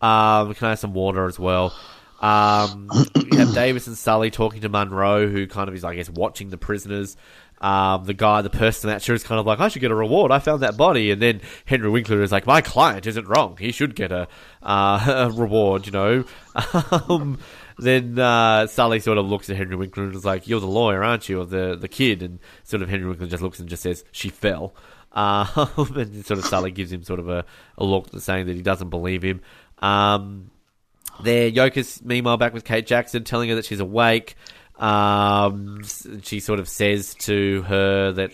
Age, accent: 20-39, Australian